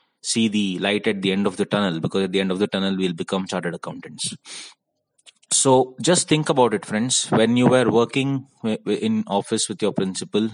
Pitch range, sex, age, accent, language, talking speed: 95-125 Hz, male, 20-39, Indian, English, 200 wpm